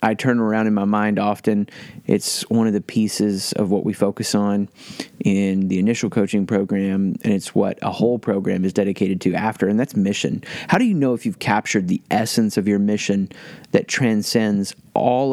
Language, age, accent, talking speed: English, 30-49, American, 195 wpm